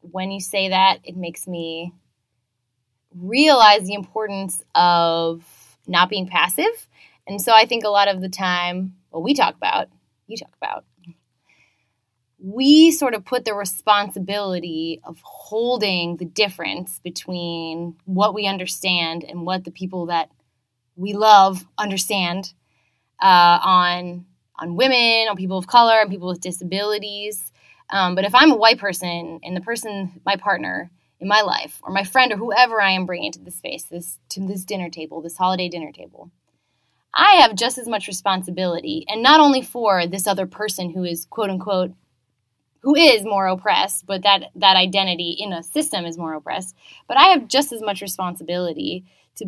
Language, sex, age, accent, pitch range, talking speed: English, female, 20-39, American, 170-205 Hz, 165 wpm